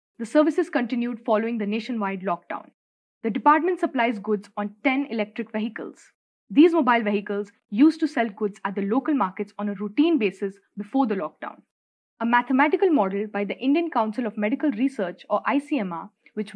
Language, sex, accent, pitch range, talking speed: English, female, Indian, 210-280 Hz, 165 wpm